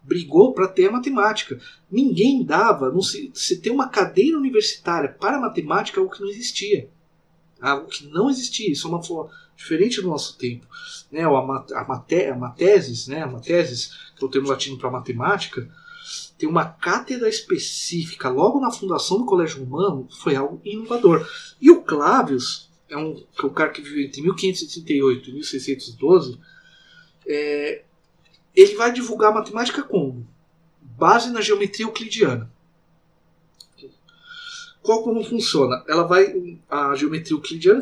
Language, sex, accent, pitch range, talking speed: Portuguese, male, Brazilian, 155-265 Hz, 150 wpm